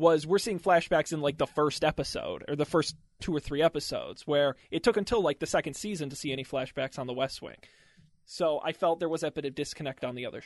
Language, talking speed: English, 255 wpm